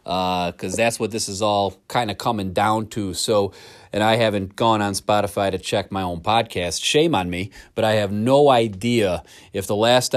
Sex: male